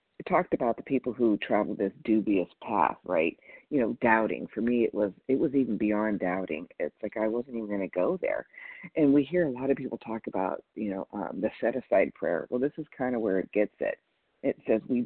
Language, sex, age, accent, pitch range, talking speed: English, female, 50-69, American, 110-150 Hz, 235 wpm